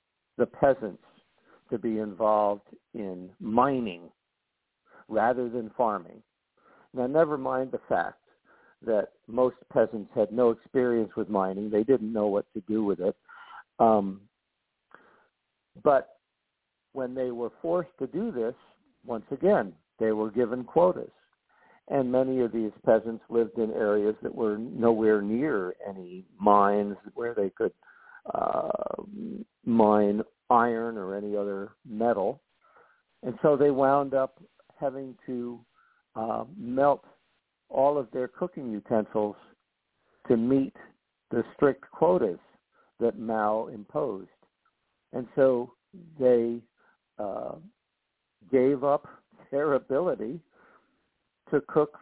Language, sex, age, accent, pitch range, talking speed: English, male, 60-79, American, 110-135 Hz, 120 wpm